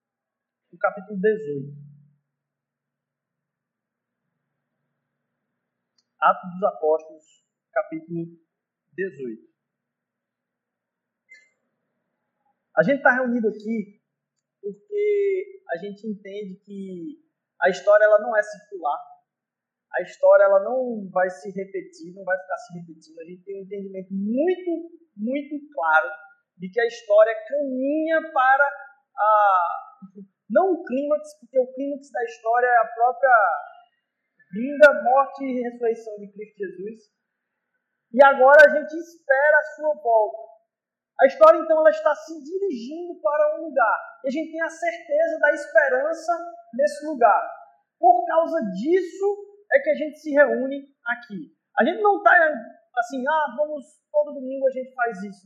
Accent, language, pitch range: Brazilian, Portuguese, 210-315 Hz